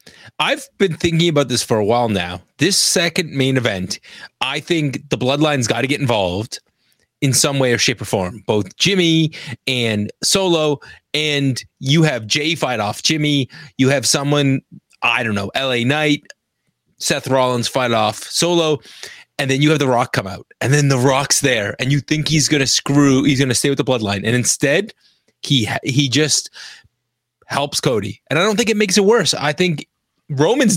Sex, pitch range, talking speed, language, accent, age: male, 130-160 Hz, 190 wpm, English, American, 30-49